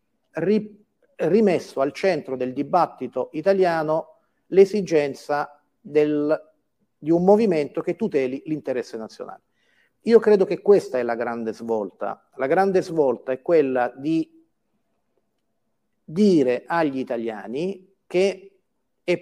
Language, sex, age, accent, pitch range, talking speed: Italian, male, 40-59, native, 135-190 Hz, 105 wpm